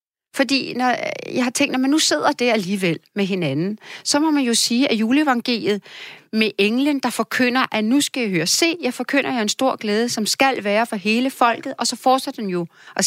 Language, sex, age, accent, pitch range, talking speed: Danish, female, 40-59, native, 205-260 Hz, 225 wpm